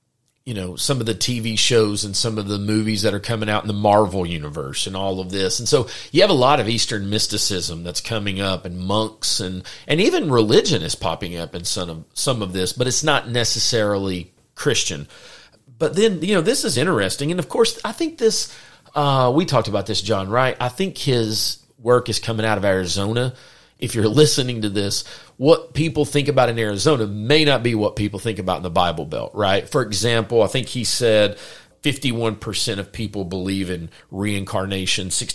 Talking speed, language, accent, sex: 205 wpm, English, American, male